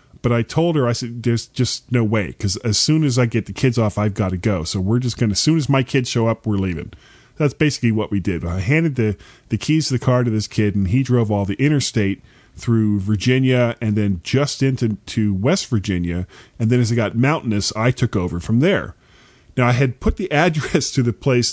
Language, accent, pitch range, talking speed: English, American, 100-135 Hz, 245 wpm